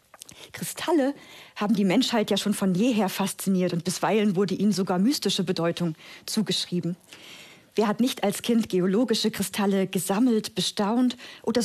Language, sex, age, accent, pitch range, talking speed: German, female, 50-69, German, 185-250 Hz, 140 wpm